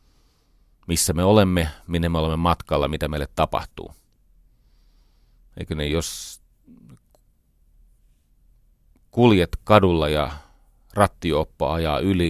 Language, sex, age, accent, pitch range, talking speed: Finnish, male, 40-59, native, 75-100 Hz, 95 wpm